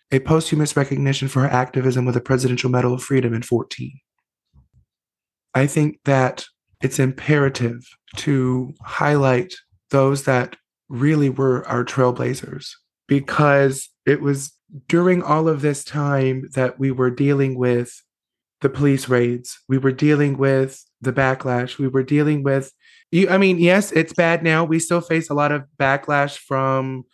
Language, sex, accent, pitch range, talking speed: English, male, American, 130-155 Hz, 150 wpm